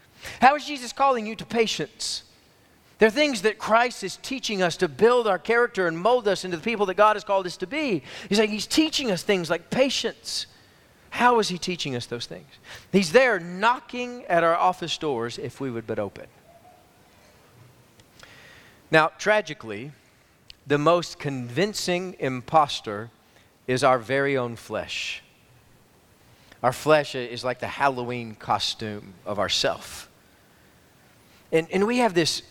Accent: American